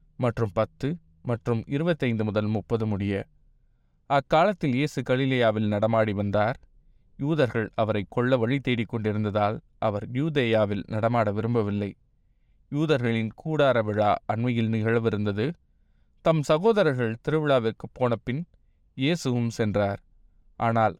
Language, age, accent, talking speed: Tamil, 20-39, native, 95 wpm